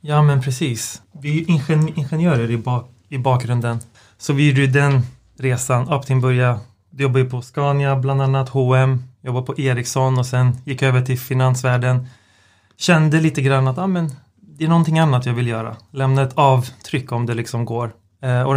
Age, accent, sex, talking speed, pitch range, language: 30-49, native, male, 180 wpm, 120-140 Hz, Swedish